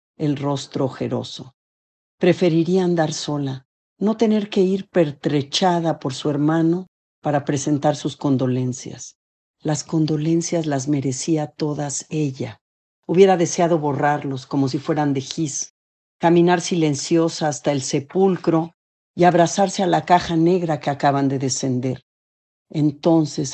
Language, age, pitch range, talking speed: Spanish, 50-69, 135-165 Hz, 120 wpm